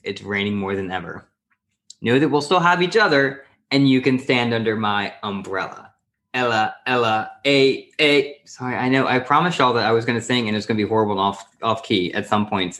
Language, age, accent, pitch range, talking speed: English, 20-39, American, 100-135 Hz, 225 wpm